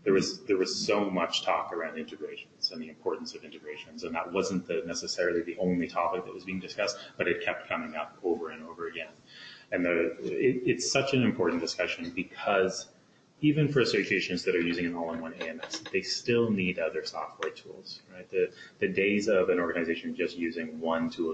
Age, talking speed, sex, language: 30-49, 195 wpm, male, English